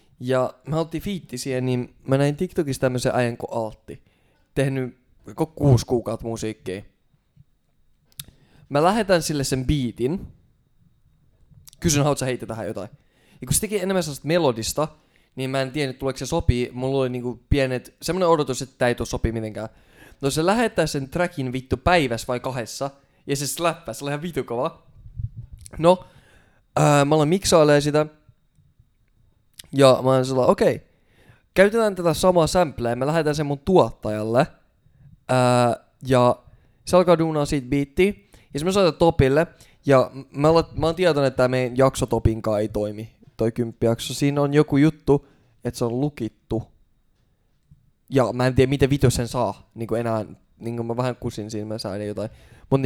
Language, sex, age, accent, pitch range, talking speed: Finnish, male, 20-39, native, 120-150 Hz, 160 wpm